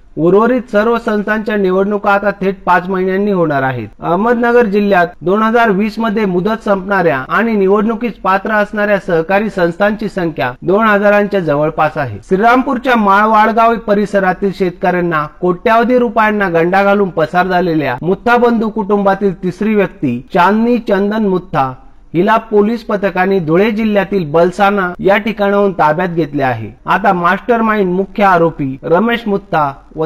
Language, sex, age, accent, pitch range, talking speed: Marathi, male, 40-59, native, 170-215 Hz, 110 wpm